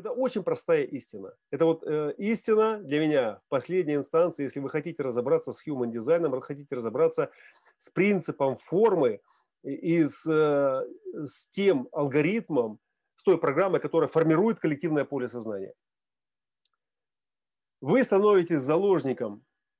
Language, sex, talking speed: Russian, male, 120 wpm